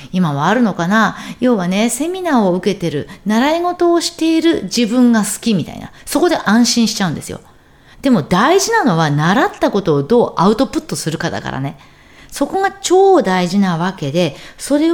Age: 40-59